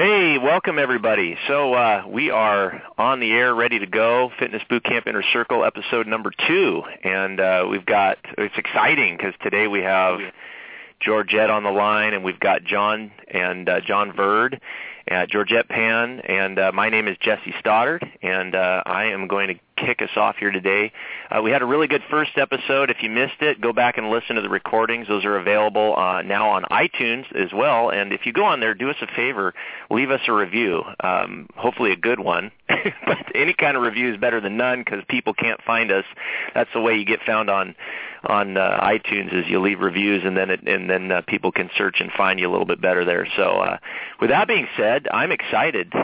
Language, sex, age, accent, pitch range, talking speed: English, male, 30-49, American, 100-120 Hz, 210 wpm